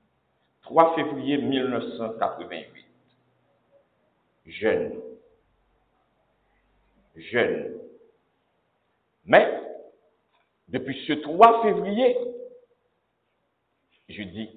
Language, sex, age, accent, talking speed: French, male, 60-79, French, 50 wpm